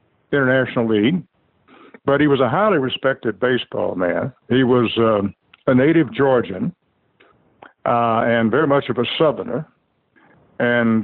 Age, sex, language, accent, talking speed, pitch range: 60-79, male, English, American, 130 wpm, 115-135 Hz